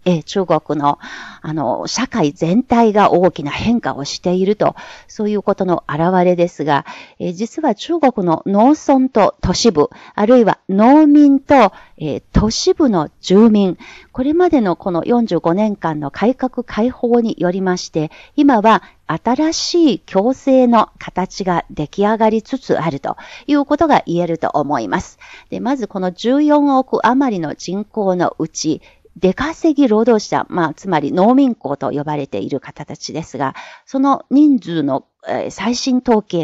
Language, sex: Japanese, female